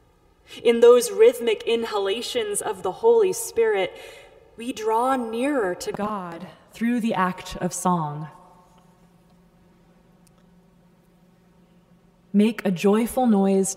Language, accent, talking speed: English, American, 95 wpm